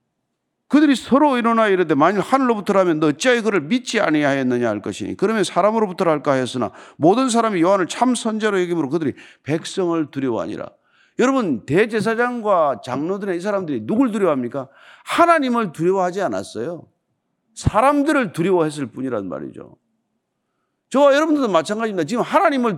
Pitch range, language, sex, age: 165-255 Hz, Korean, male, 40-59